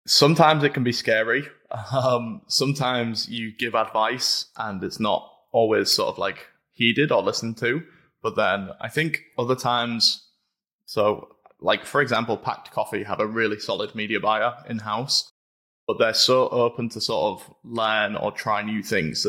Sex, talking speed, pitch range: male, 160 wpm, 110-120 Hz